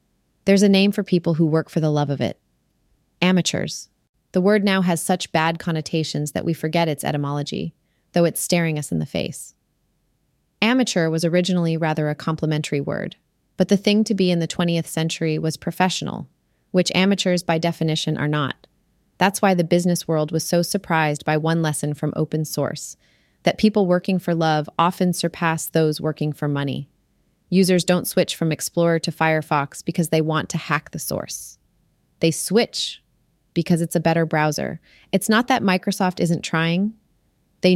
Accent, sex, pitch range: American, female, 155-180 Hz